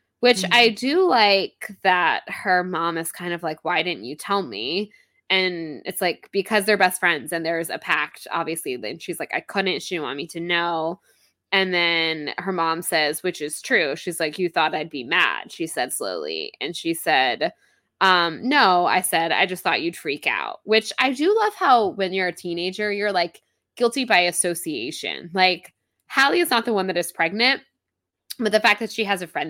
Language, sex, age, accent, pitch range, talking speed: English, female, 20-39, American, 175-240 Hz, 205 wpm